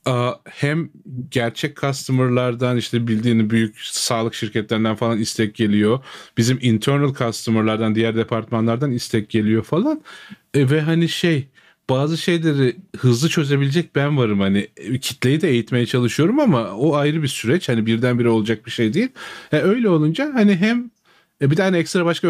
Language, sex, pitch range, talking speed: Turkish, male, 115-160 Hz, 145 wpm